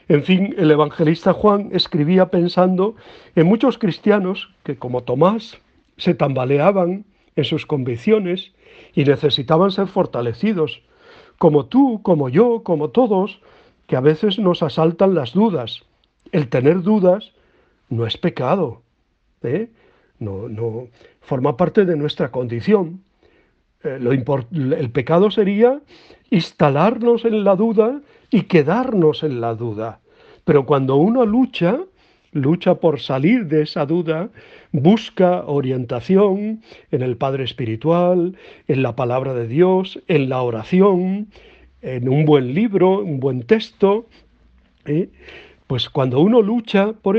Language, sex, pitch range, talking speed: Spanish, male, 140-205 Hz, 120 wpm